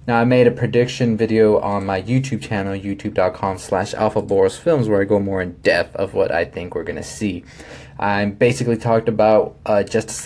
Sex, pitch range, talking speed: male, 105-120 Hz, 185 wpm